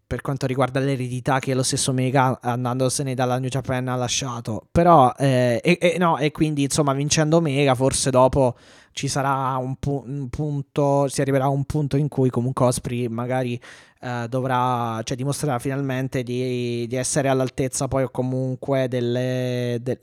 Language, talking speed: Italian, 170 wpm